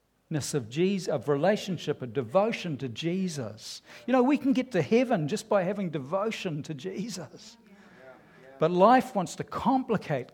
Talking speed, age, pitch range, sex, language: 145 wpm, 60-79, 145-235 Hz, male, English